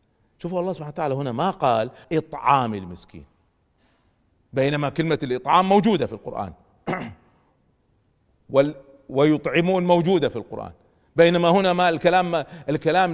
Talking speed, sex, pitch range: 115 wpm, male, 115-175 Hz